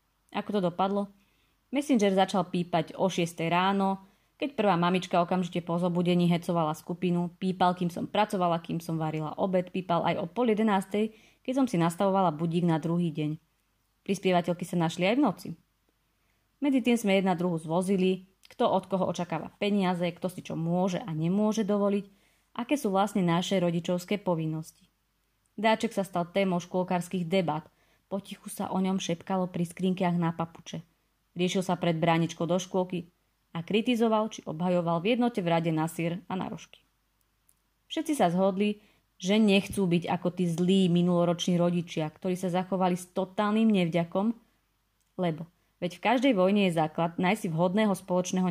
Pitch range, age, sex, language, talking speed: 170-195 Hz, 30-49, female, Slovak, 155 wpm